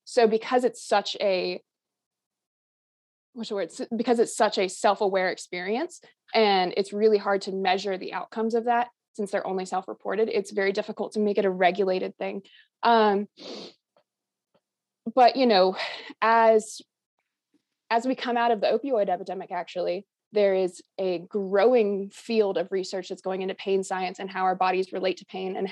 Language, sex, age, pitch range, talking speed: English, female, 20-39, 190-230 Hz, 160 wpm